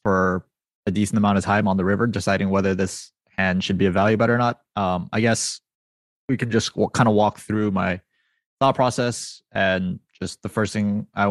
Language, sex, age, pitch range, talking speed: English, male, 20-39, 95-115 Hz, 205 wpm